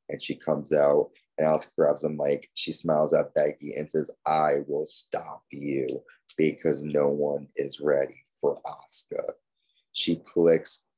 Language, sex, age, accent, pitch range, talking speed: English, male, 30-49, American, 75-80 Hz, 155 wpm